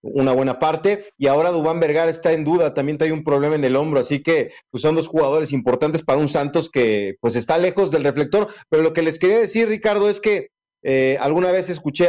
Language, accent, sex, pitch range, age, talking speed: Spanish, Mexican, male, 140-190 Hz, 40-59, 230 wpm